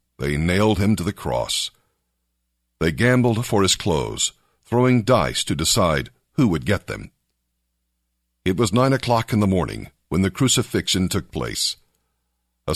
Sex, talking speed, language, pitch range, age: male, 150 wpm, English, 70-120 Hz, 60-79